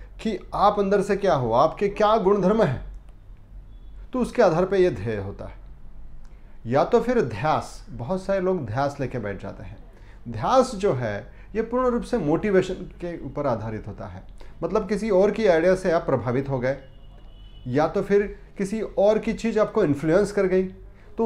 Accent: native